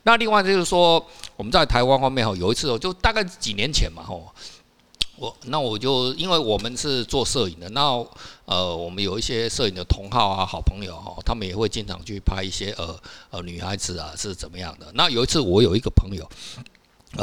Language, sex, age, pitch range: Chinese, male, 50-69, 95-135 Hz